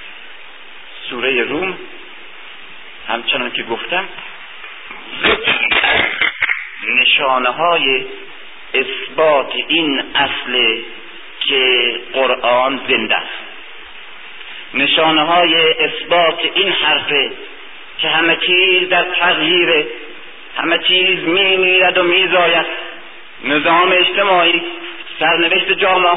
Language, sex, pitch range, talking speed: Persian, male, 170-220 Hz, 80 wpm